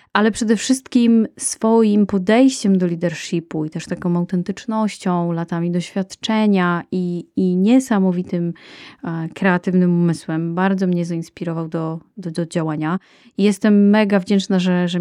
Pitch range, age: 175-210 Hz, 30-49